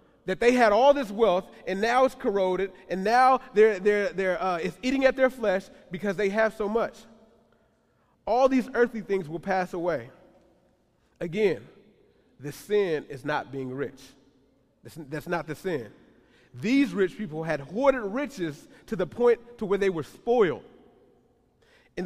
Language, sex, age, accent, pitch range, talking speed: English, male, 30-49, American, 180-220 Hz, 165 wpm